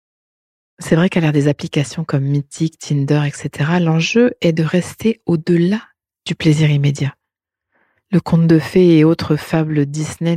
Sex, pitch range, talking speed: female, 150-180 Hz, 150 wpm